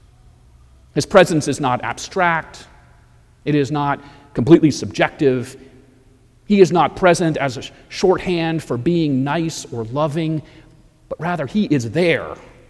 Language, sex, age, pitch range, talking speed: English, male, 40-59, 120-160 Hz, 130 wpm